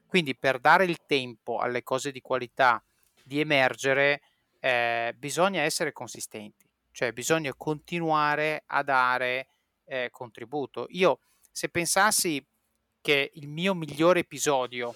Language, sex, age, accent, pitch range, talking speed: Italian, male, 30-49, native, 125-160 Hz, 120 wpm